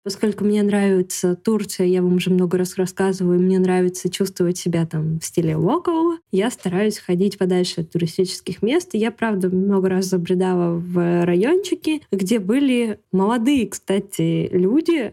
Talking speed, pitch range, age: 145 wpm, 185-250 Hz, 20-39